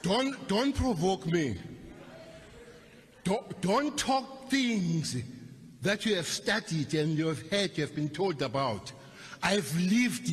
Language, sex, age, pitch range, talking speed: English, male, 60-79, 180-285 Hz, 135 wpm